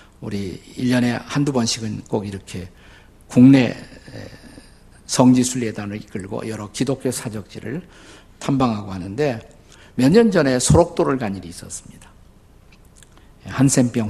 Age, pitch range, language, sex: 50-69, 110-150 Hz, Korean, male